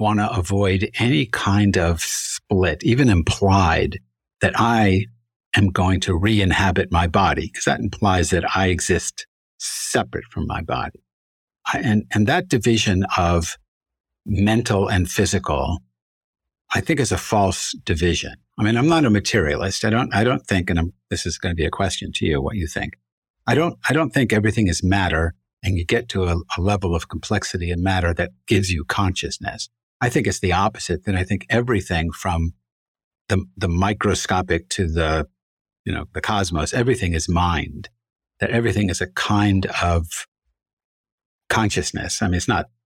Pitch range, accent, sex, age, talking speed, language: 85-105 Hz, American, male, 60-79, 170 wpm, English